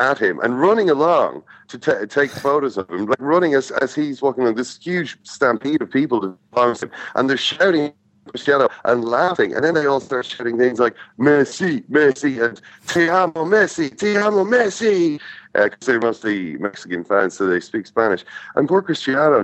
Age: 40-59